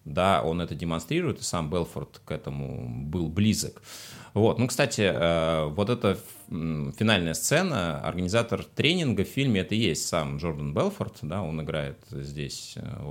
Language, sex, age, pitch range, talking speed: Russian, male, 30-49, 80-110 Hz, 150 wpm